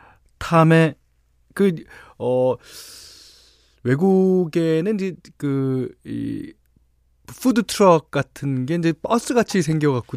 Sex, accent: male, native